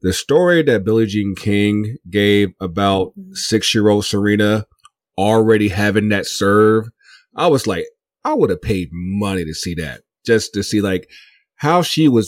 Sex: male